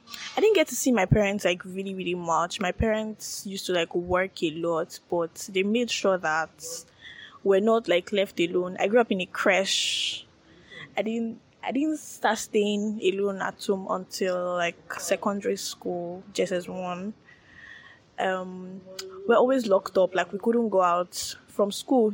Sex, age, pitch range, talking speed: female, 10-29, 185-220 Hz, 170 wpm